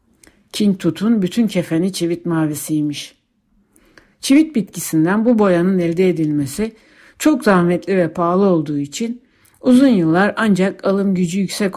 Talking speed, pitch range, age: 120 wpm, 160-205 Hz, 60-79